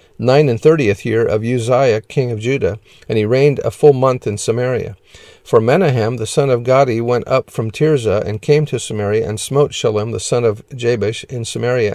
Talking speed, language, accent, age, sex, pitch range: 200 wpm, English, American, 50-69, male, 115-145 Hz